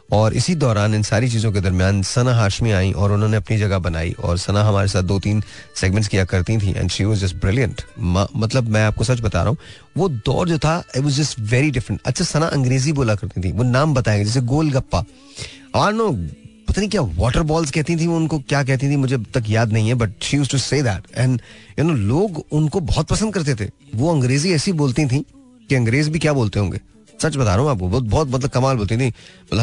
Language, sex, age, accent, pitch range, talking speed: Hindi, male, 30-49, native, 100-140 Hz, 225 wpm